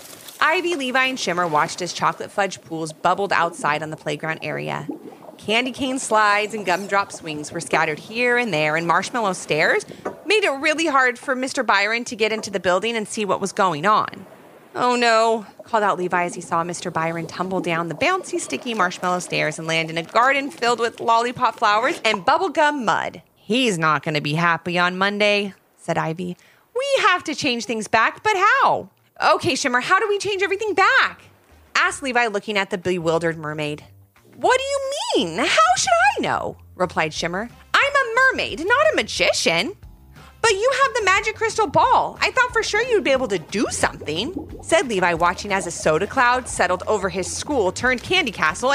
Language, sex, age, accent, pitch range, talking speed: English, female, 30-49, American, 175-280 Hz, 190 wpm